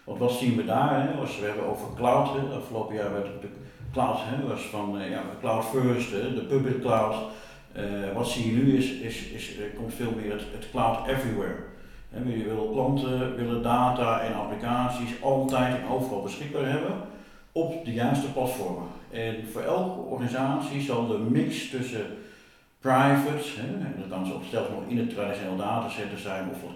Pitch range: 105-130 Hz